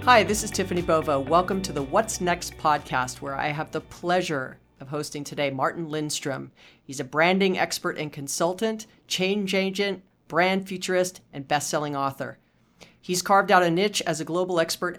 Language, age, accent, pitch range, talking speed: English, 40-59, American, 150-180 Hz, 170 wpm